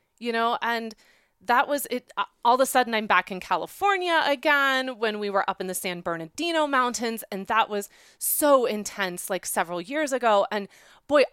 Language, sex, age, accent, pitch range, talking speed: English, female, 30-49, American, 190-235 Hz, 185 wpm